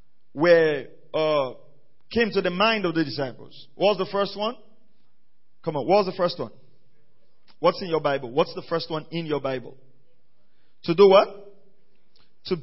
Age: 40-59